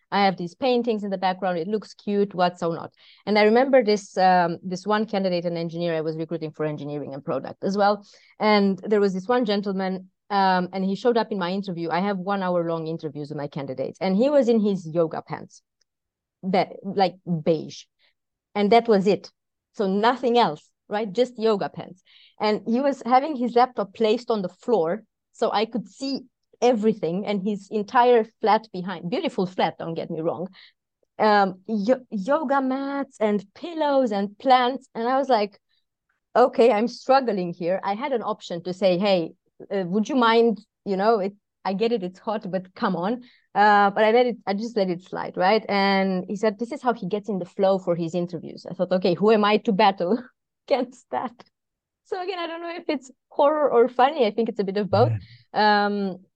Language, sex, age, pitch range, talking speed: English, female, 30-49, 185-235 Hz, 200 wpm